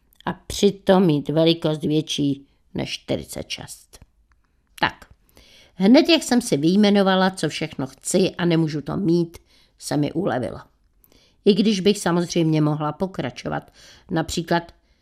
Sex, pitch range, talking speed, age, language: female, 155-195 Hz, 120 wpm, 50-69, Czech